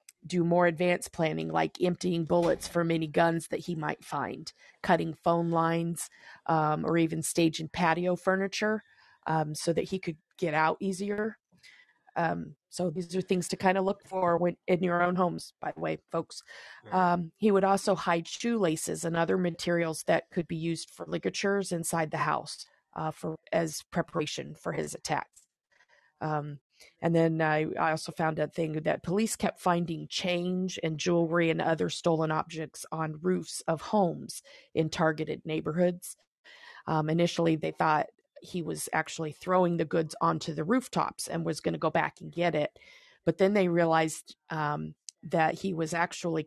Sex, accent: female, American